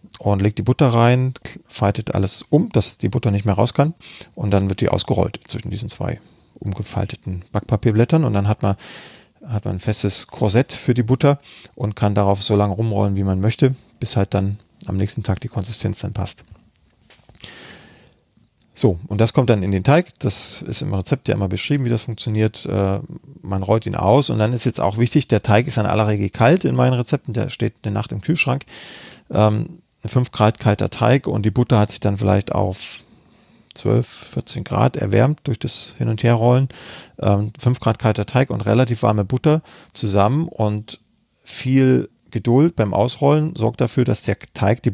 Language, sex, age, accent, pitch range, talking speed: German, male, 40-59, German, 105-125 Hz, 190 wpm